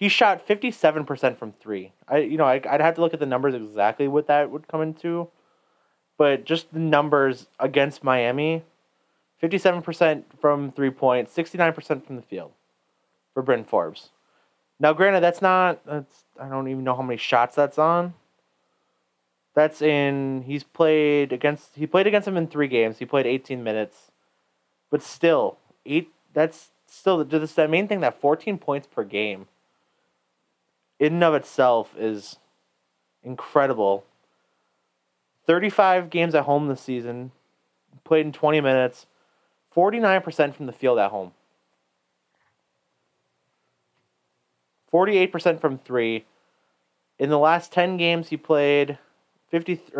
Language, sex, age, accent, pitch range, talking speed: English, male, 20-39, American, 125-160 Hz, 150 wpm